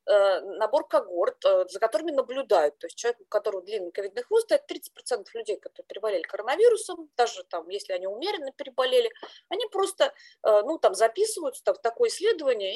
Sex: female